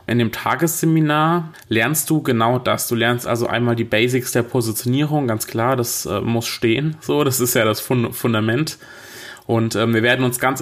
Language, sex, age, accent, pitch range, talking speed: German, male, 20-39, German, 115-135 Hz, 190 wpm